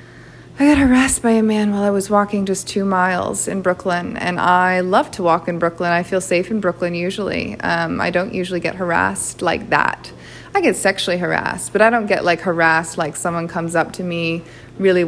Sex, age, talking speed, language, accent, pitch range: female, 20-39, 210 wpm, English, American, 170-195 Hz